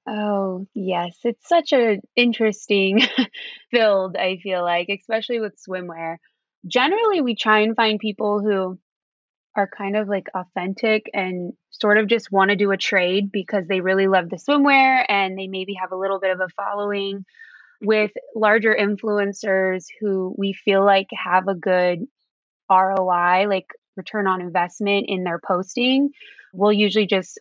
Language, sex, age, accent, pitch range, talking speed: English, female, 20-39, American, 190-225 Hz, 155 wpm